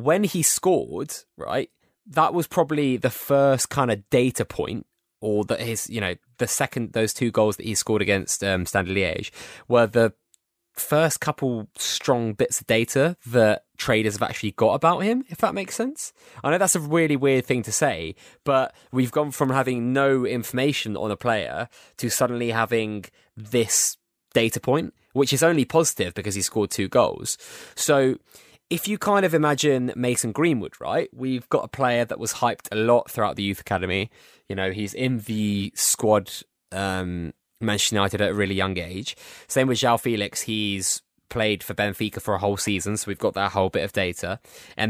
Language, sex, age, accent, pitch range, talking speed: English, male, 20-39, British, 105-135 Hz, 185 wpm